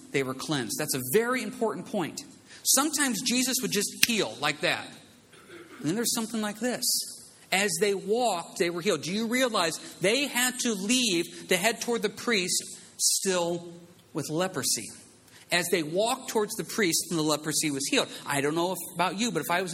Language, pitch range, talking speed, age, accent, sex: English, 150-225 Hz, 190 wpm, 40-59, American, male